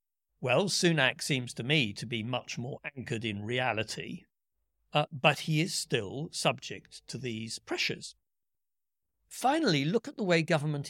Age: 60-79